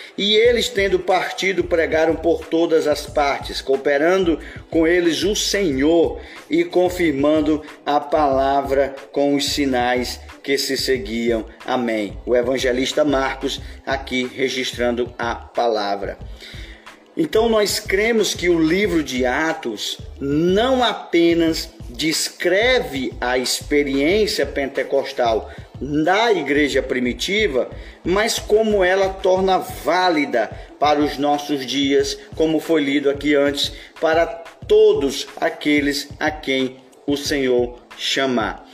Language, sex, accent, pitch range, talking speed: Portuguese, male, Brazilian, 130-165 Hz, 110 wpm